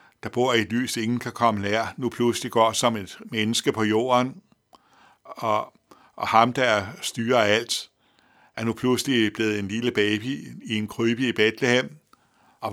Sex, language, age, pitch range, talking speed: male, Danish, 60-79, 110-125 Hz, 170 wpm